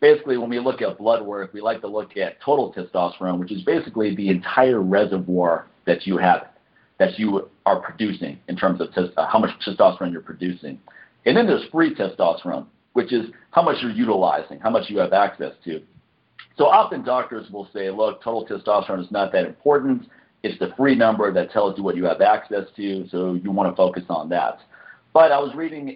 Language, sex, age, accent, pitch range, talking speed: English, male, 50-69, American, 95-120 Hz, 200 wpm